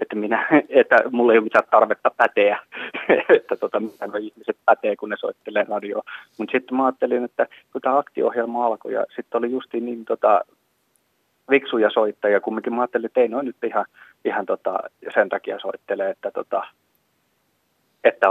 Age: 30-49